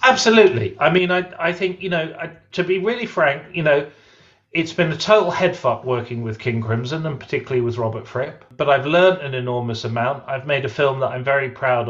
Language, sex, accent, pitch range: English, male, British, 115-165 Hz